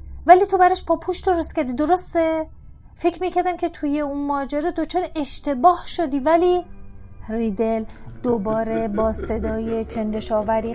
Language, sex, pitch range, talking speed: Persian, female, 230-305 Hz, 130 wpm